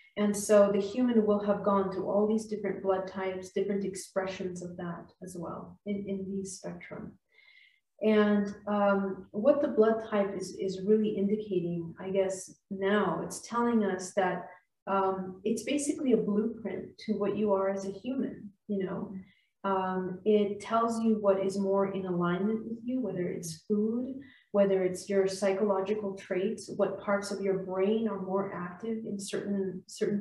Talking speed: 165 wpm